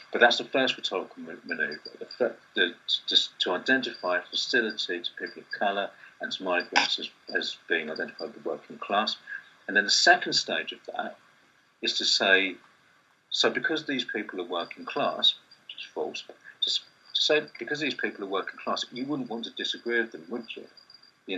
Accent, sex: British, male